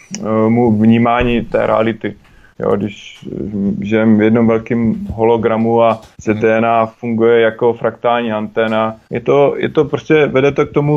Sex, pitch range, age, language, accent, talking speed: male, 115-130 Hz, 20-39, Czech, native, 130 wpm